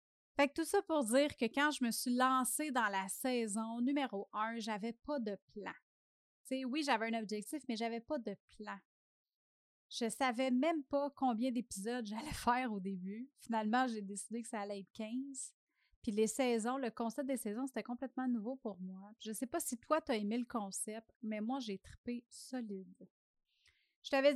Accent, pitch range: Canadian, 215-265 Hz